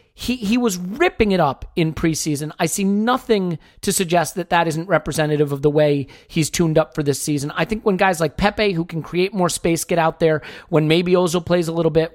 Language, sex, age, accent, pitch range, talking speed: English, male, 40-59, American, 150-190 Hz, 230 wpm